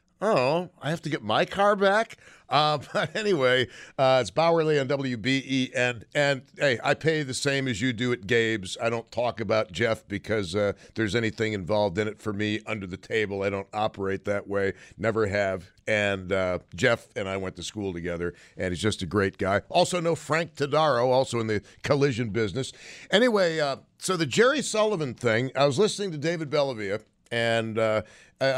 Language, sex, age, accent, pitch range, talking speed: English, male, 50-69, American, 110-145 Hz, 190 wpm